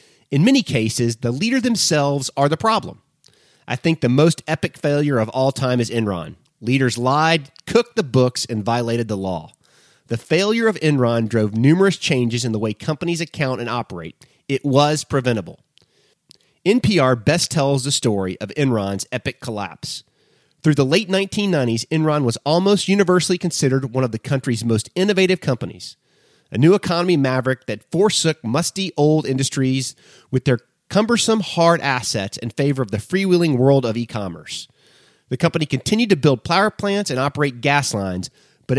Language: English